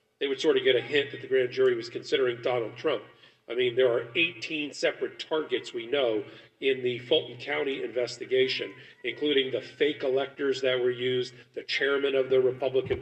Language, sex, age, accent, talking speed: English, male, 40-59, American, 190 wpm